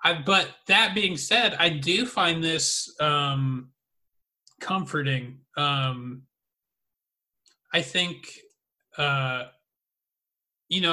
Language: English